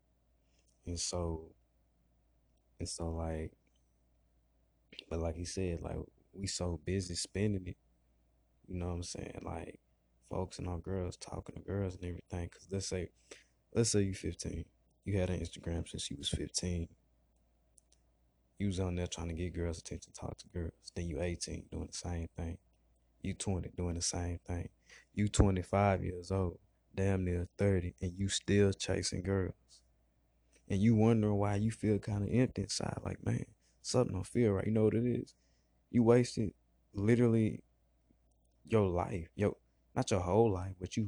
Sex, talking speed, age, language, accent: male, 165 wpm, 20-39, English, American